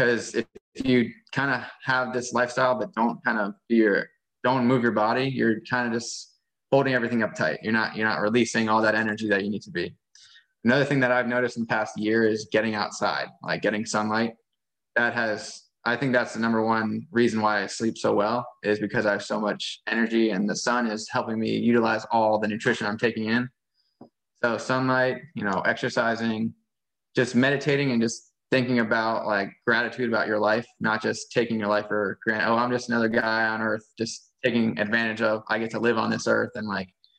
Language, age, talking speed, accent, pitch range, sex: English, 20-39, 210 wpm, American, 110-125 Hz, male